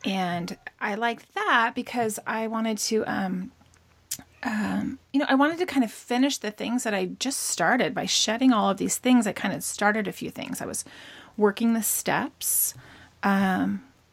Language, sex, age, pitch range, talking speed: English, female, 30-49, 190-230 Hz, 185 wpm